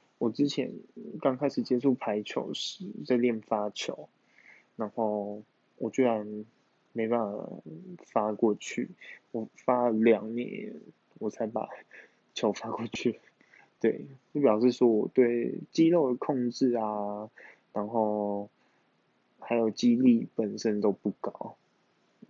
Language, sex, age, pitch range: Chinese, male, 20-39, 110-130 Hz